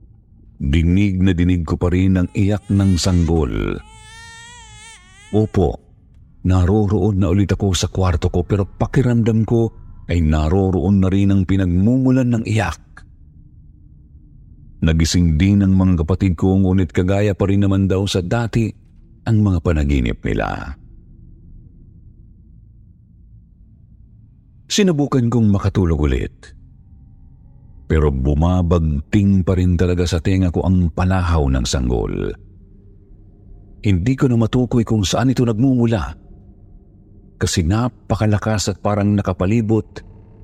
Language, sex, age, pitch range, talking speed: Filipino, male, 50-69, 90-105 Hz, 115 wpm